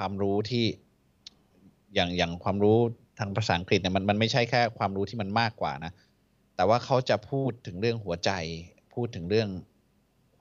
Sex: male